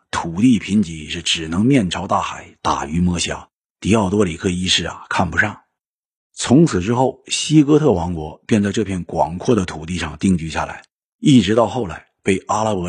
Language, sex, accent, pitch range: Chinese, male, native, 80-115 Hz